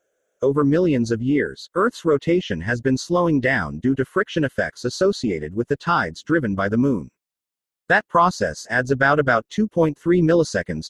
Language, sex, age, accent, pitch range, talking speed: English, male, 40-59, American, 120-165 Hz, 160 wpm